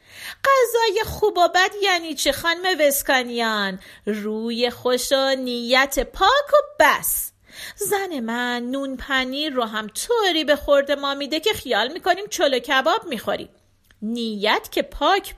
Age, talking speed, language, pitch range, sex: 40-59, 135 wpm, Persian, 225-315 Hz, female